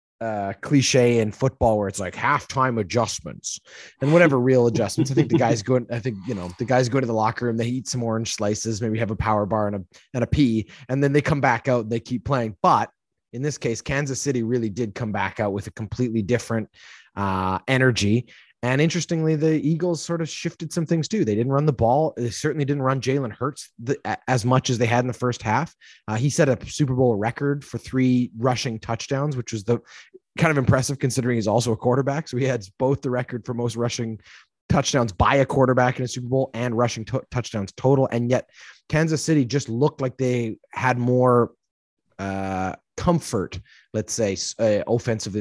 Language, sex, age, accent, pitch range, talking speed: English, male, 30-49, American, 110-135 Hz, 215 wpm